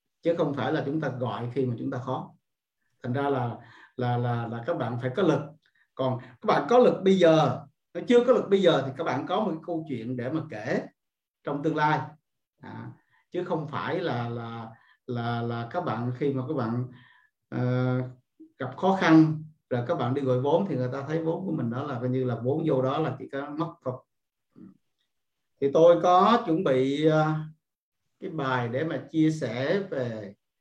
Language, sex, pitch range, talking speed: Vietnamese, male, 125-160 Hz, 210 wpm